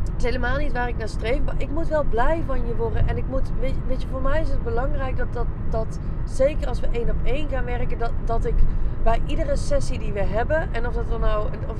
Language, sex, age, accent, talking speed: Dutch, female, 20-39, Dutch, 265 wpm